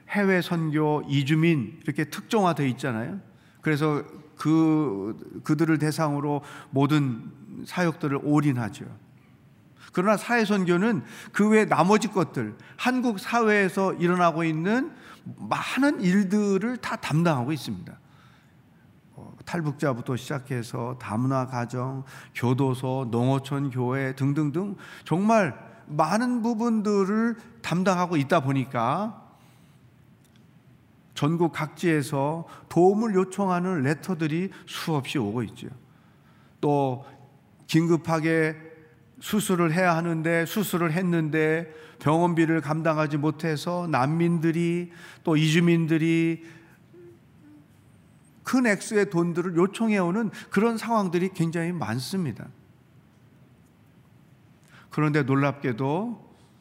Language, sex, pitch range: Korean, male, 140-185 Hz